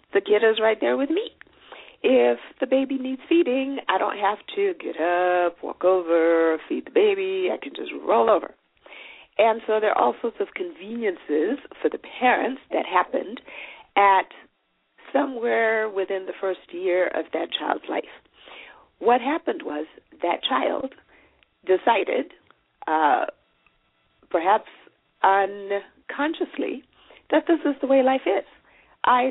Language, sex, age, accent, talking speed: English, female, 40-59, American, 140 wpm